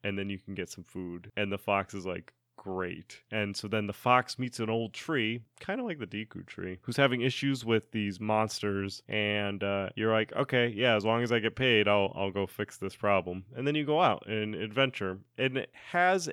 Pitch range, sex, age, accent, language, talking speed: 100-125 Hz, male, 20-39, American, English, 230 wpm